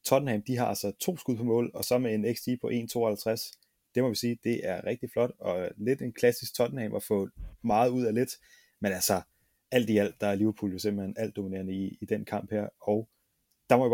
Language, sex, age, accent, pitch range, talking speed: Danish, male, 30-49, native, 105-125 Hz, 235 wpm